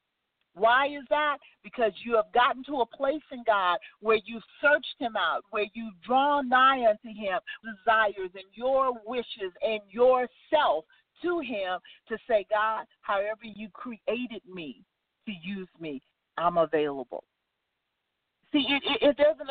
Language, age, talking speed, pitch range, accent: English, 40-59, 150 wpm, 220-285 Hz, American